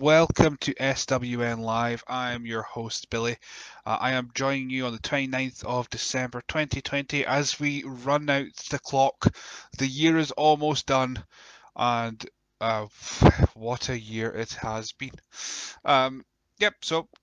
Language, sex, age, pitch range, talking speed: English, male, 20-39, 115-140 Hz, 145 wpm